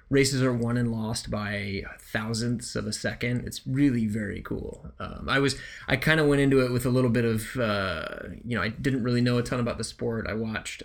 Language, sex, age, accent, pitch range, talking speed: English, male, 20-39, American, 110-130 Hz, 225 wpm